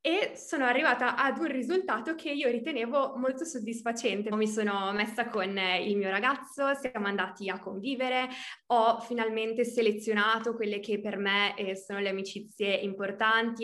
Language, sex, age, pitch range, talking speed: Italian, female, 20-39, 215-270 Hz, 145 wpm